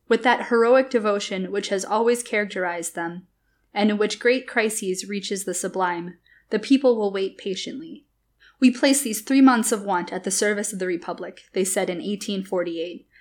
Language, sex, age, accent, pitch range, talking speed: English, female, 20-39, American, 185-235 Hz, 175 wpm